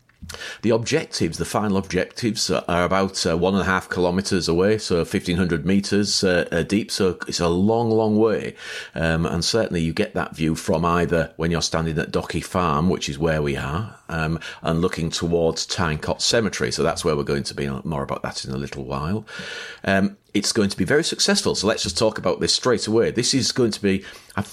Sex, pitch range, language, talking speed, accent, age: male, 85-110 Hz, English, 215 wpm, British, 40-59